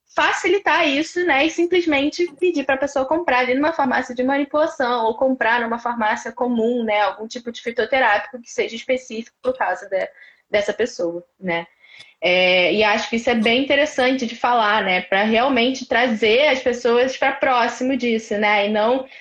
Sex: female